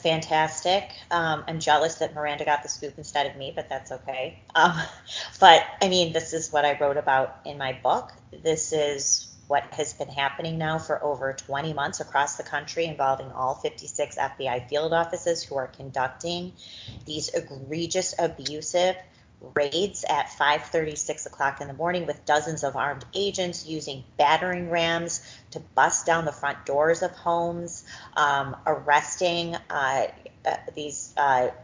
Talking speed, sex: 155 wpm, female